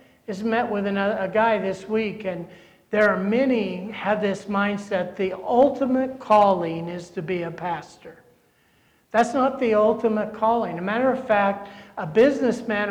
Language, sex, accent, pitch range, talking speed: English, male, American, 195-225 Hz, 165 wpm